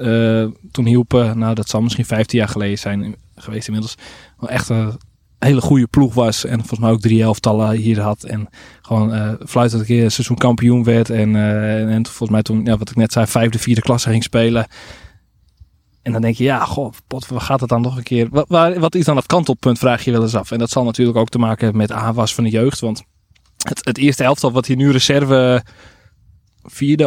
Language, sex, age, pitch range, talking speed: Dutch, male, 20-39, 110-130 Hz, 230 wpm